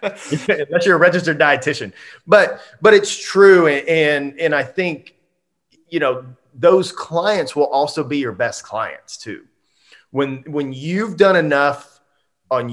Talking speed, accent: 145 wpm, American